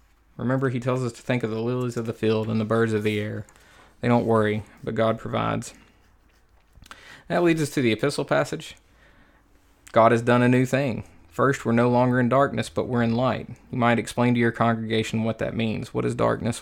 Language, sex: English, male